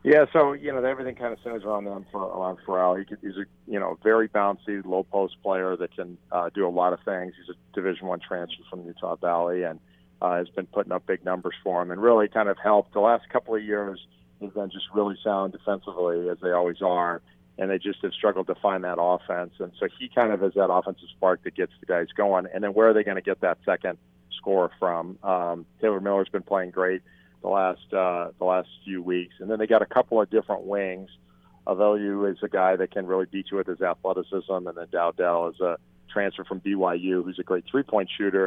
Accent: American